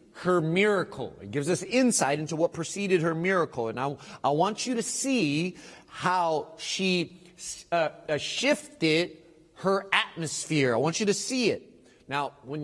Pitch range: 140-170 Hz